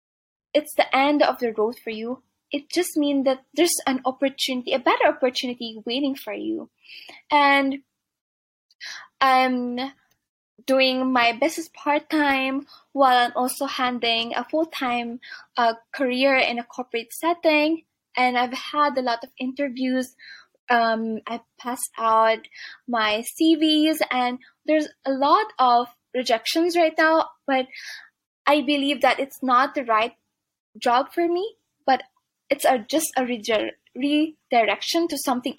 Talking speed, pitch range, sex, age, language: 135 wpm, 245-300 Hz, female, 20-39, English